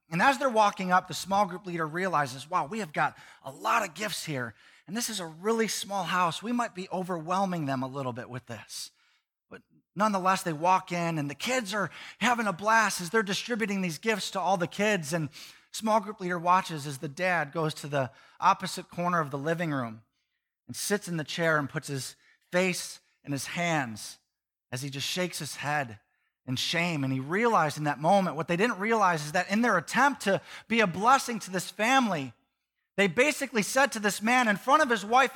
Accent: American